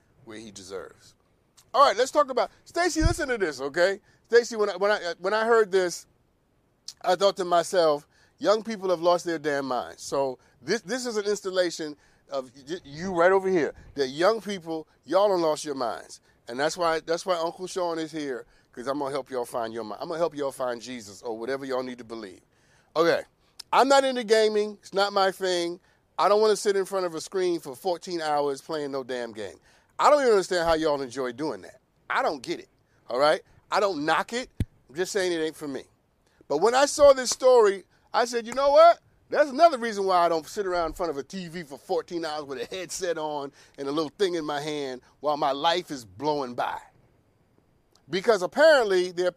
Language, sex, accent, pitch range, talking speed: English, male, American, 140-200 Hz, 220 wpm